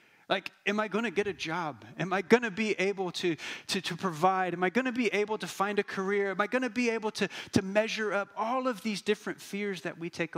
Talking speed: 265 wpm